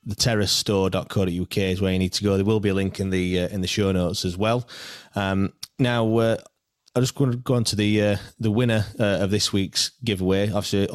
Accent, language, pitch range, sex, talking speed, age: British, English, 95-110 Hz, male, 230 wpm, 20-39